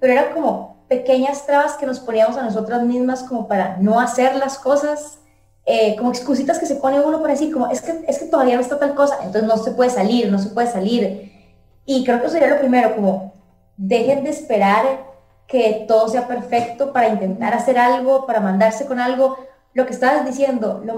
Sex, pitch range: female, 215-260 Hz